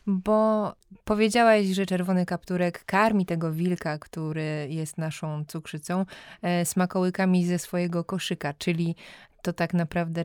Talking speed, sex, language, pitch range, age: 115 wpm, female, Polish, 165-190 Hz, 20-39